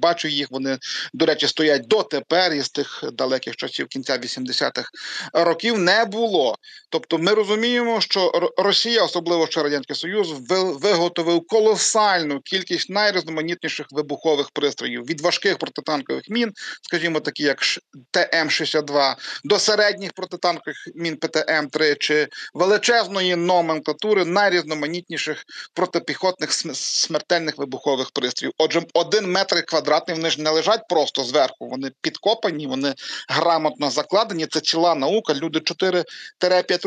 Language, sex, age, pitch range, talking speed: Ukrainian, male, 40-59, 150-195 Hz, 120 wpm